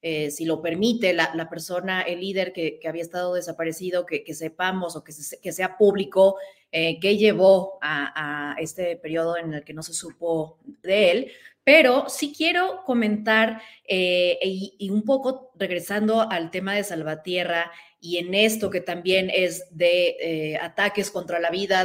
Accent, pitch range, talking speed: Mexican, 180-220 Hz, 175 wpm